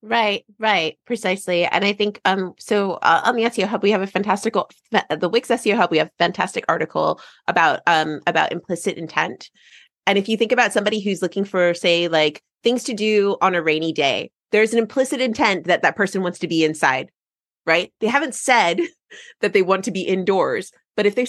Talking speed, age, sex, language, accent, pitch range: 205 wpm, 30-49, female, English, American, 165-215 Hz